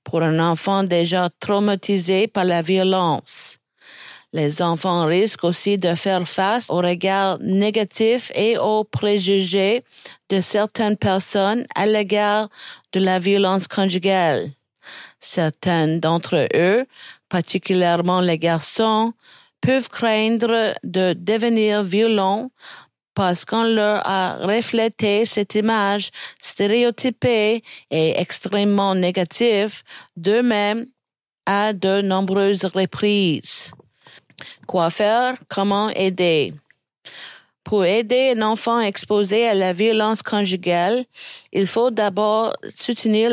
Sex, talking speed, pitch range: female, 100 wpm, 185-220 Hz